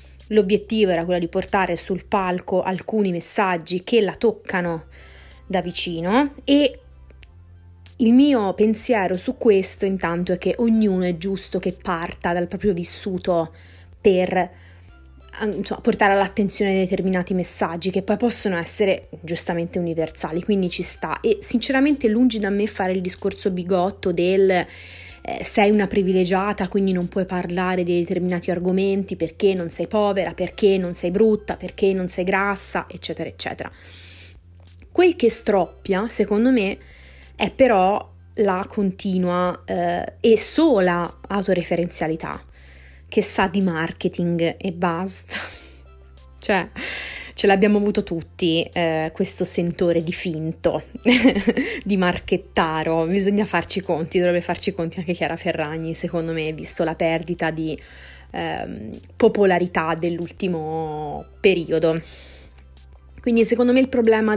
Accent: native